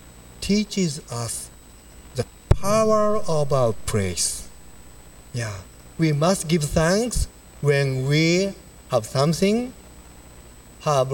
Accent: Japanese